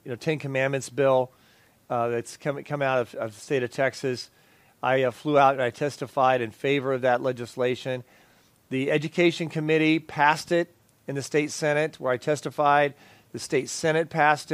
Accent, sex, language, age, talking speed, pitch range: American, male, English, 40-59, 180 wpm, 130-155 Hz